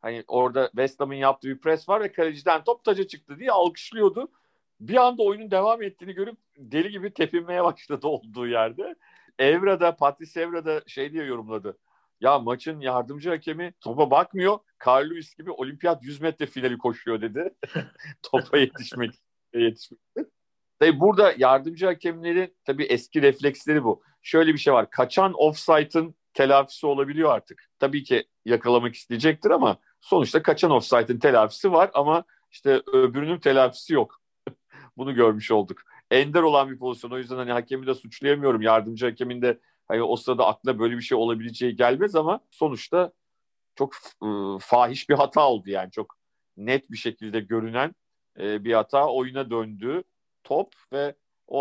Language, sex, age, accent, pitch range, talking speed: Turkish, male, 50-69, native, 120-165 Hz, 150 wpm